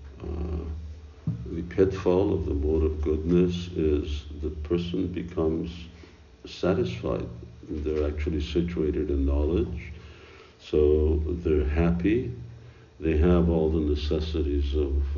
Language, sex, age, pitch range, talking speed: English, male, 60-79, 75-85 Hz, 105 wpm